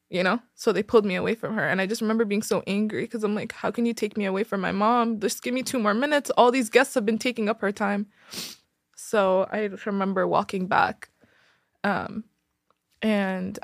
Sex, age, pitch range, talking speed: female, 20-39, 210-295 Hz, 220 wpm